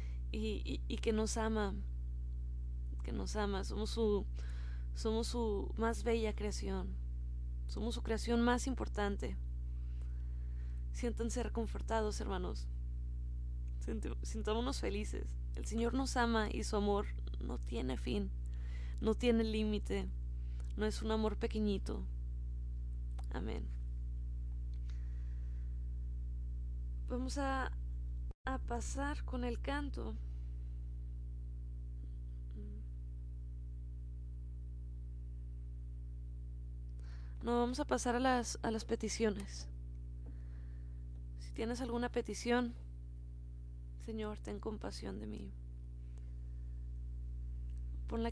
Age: 20-39